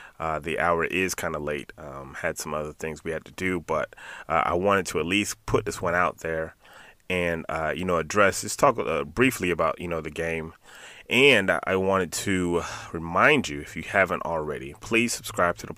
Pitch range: 80-95 Hz